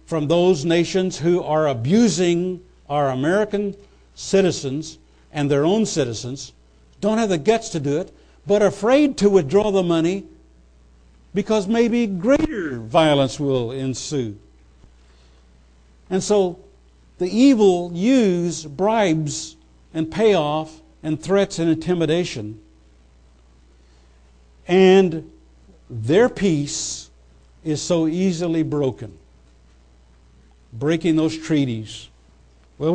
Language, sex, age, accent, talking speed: English, male, 60-79, American, 100 wpm